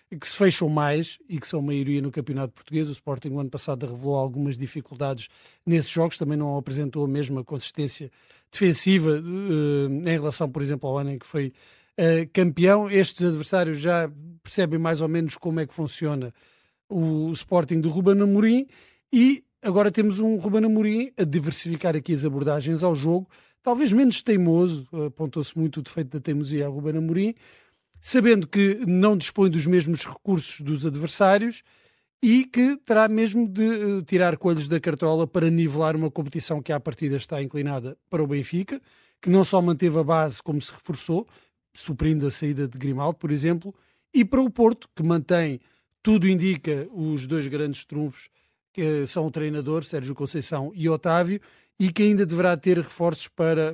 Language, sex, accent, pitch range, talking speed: Portuguese, male, Portuguese, 150-185 Hz, 170 wpm